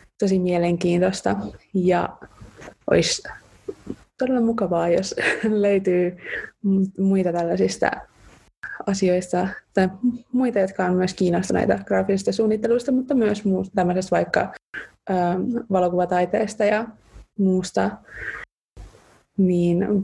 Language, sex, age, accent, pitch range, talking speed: Finnish, female, 20-39, native, 180-215 Hz, 80 wpm